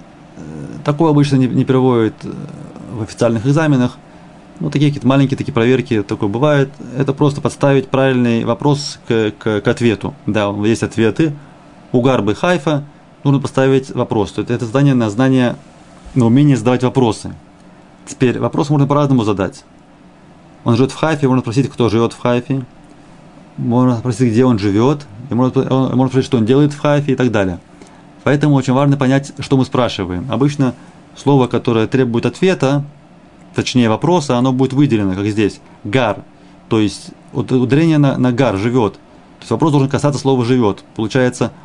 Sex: male